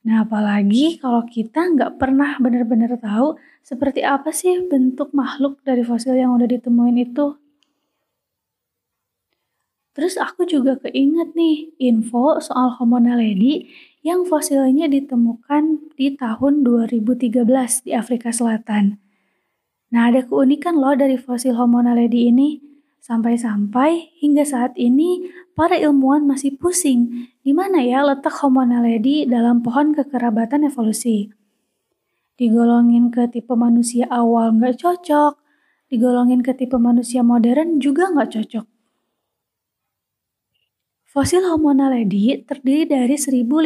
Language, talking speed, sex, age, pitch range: Indonesian, 115 wpm, female, 20-39, 240-290 Hz